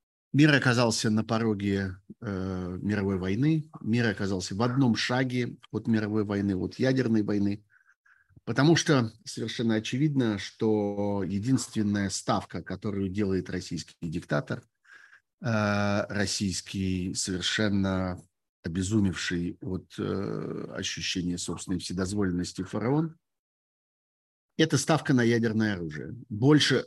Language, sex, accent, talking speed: Russian, male, native, 100 wpm